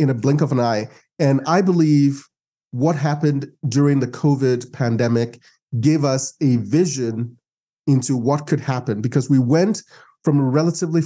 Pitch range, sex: 130-160 Hz, male